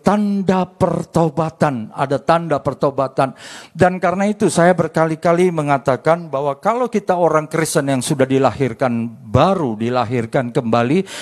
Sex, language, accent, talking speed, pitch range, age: male, Indonesian, native, 120 wpm, 135-175 Hz, 50-69